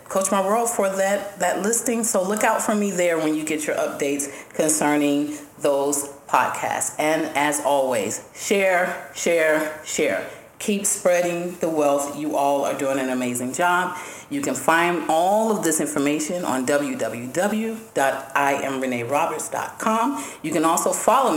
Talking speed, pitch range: 145 wpm, 150-225 Hz